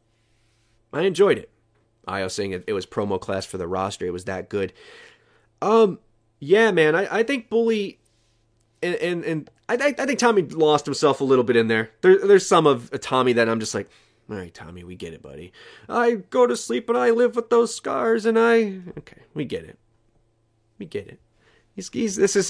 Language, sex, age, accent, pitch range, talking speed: English, male, 30-49, American, 115-190 Hz, 210 wpm